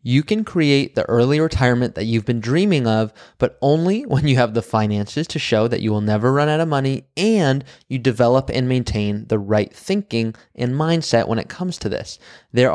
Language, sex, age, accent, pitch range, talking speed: English, male, 20-39, American, 110-145 Hz, 205 wpm